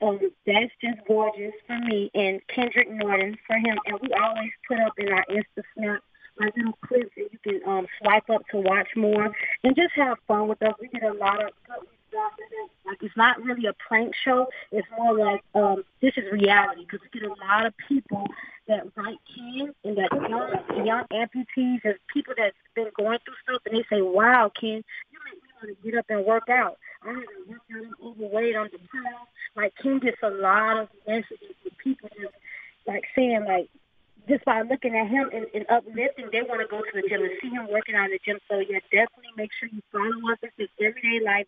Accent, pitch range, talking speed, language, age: American, 205-240 Hz, 210 wpm, English, 20-39